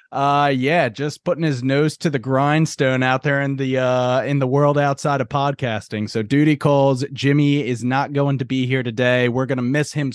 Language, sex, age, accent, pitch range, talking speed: English, male, 30-49, American, 120-145 Hz, 215 wpm